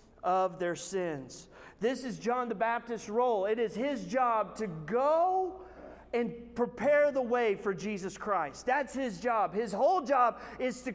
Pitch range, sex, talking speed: 200-250 Hz, male, 165 wpm